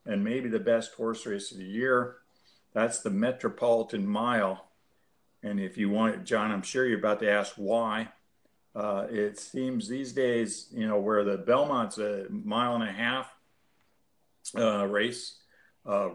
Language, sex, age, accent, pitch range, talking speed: English, male, 50-69, American, 105-115 Hz, 160 wpm